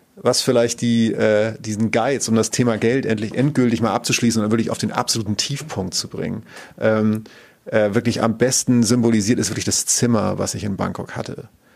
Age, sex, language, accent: 40-59, male, German, German